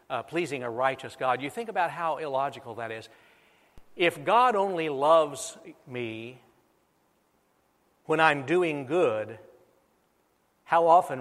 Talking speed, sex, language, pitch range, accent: 125 wpm, male, English, 130-165 Hz, American